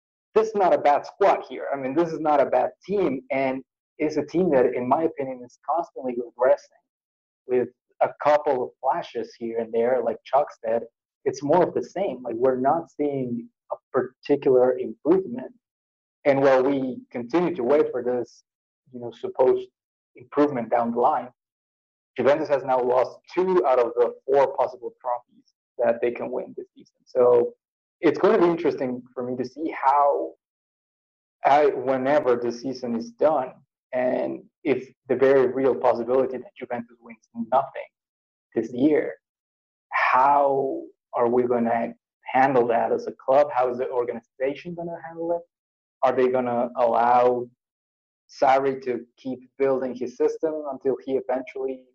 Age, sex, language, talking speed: 20-39, male, English, 160 wpm